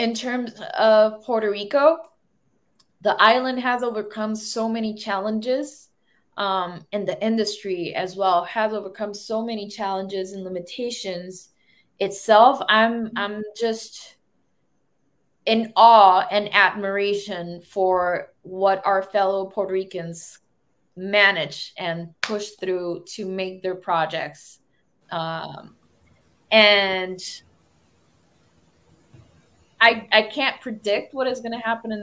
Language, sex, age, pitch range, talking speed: English, female, 20-39, 185-225 Hz, 110 wpm